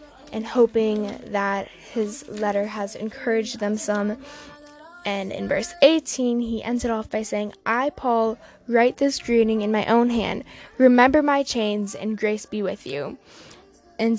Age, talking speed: 10-29, 155 wpm